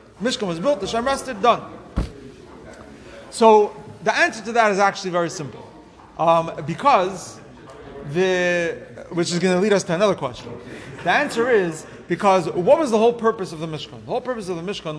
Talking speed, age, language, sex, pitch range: 180 wpm, 30-49, English, male, 175-230 Hz